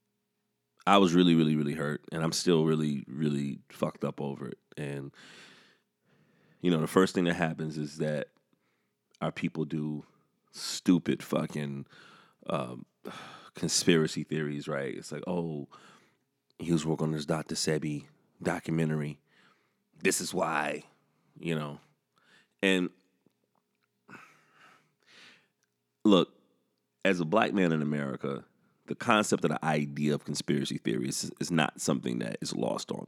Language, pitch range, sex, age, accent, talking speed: English, 70-80 Hz, male, 30-49, American, 135 wpm